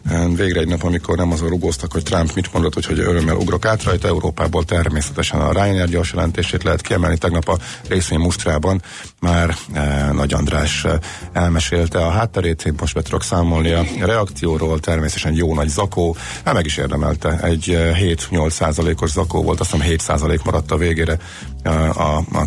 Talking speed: 165 wpm